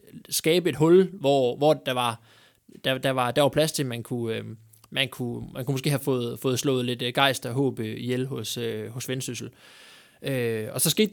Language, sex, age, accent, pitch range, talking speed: Danish, male, 20-39, native, 120-150 Hz, 195 wpm